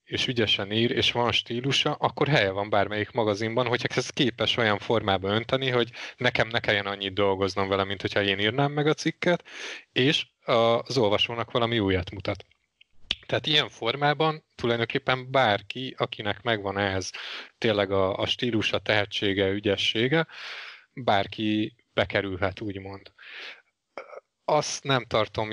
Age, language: 30-49, Hungarian